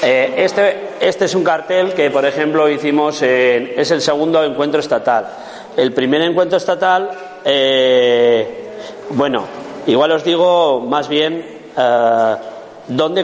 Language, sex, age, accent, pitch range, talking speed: Spanish, male, 40-59, Spanish, 125-165 Hz, 125 wpm